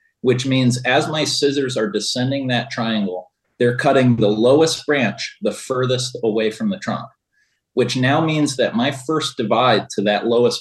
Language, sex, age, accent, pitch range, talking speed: English, male, 30-49, American, 110-135 Hz, 170 wpm